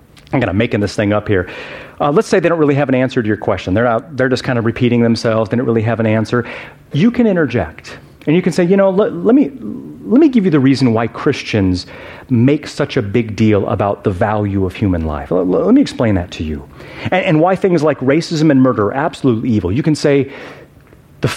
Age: 40-59